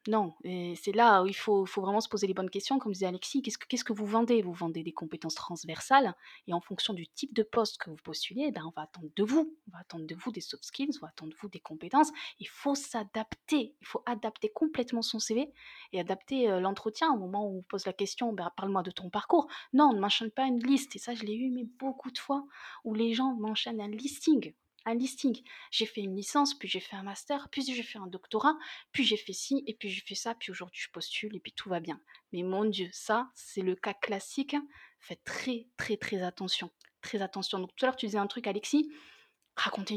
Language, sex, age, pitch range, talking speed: French, female, 20-39, 195-250 Hz, 250 wpm